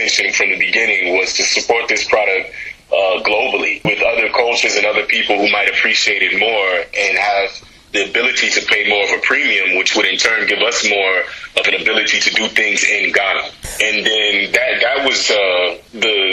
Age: 30-49